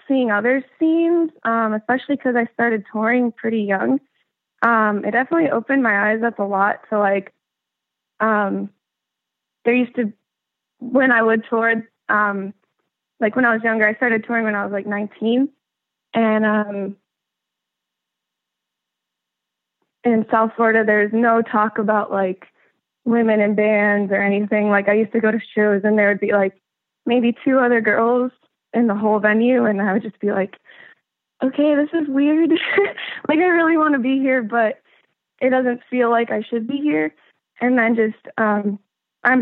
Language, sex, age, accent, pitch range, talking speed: English, female, 20-39, American, 200-245 Hz, 165 wpm